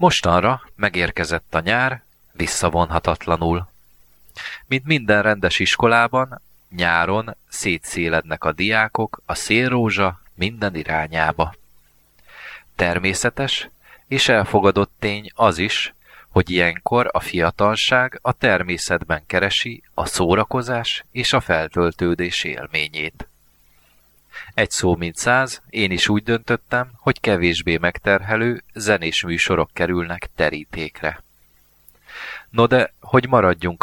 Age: 30-49